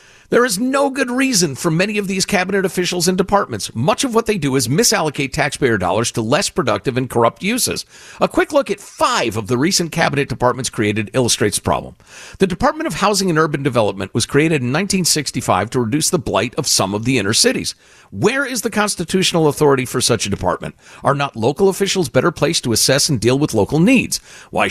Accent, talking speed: American, 210 wpm